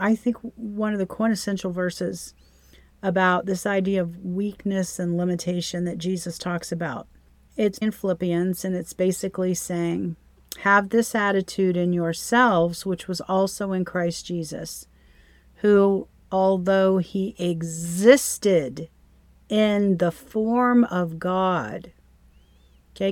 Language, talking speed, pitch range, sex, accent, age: English, 120 wpm, 170-205 Hz, female, American, 40-59